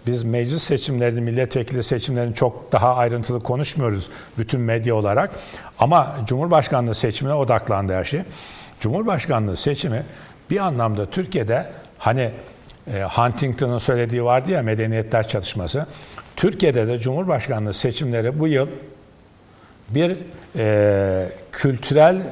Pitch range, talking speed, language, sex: 115-150 Hz, 100 wpm, Turkish, male